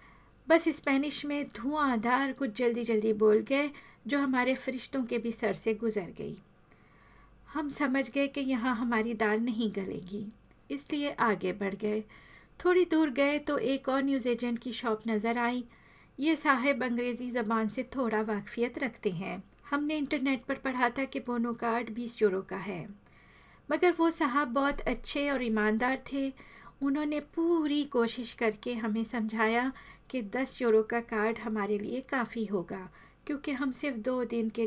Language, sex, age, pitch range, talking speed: Hindi, female, 50-69, 220-275 Hz, 160 wpm